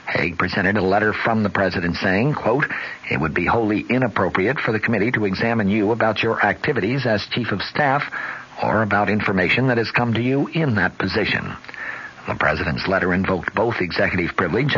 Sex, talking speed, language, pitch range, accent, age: male, 185 wpm, English, 95-125 Hz, American, 60-79